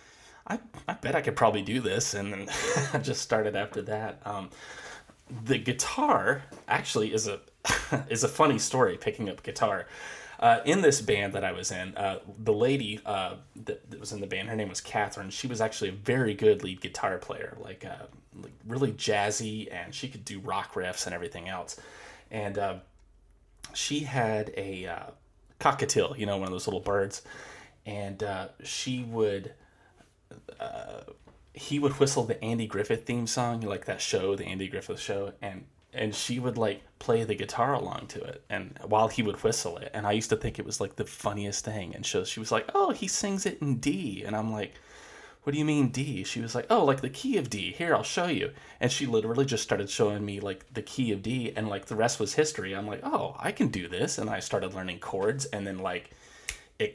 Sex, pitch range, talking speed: male, 100-130 Hz, 210 wpm